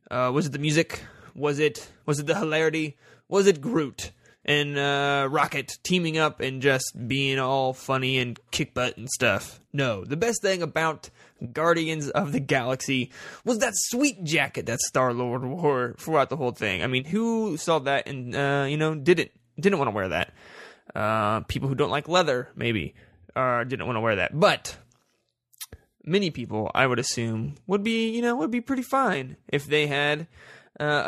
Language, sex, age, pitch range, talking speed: English, male, 20-39, 130-165 Hz, 185 wpm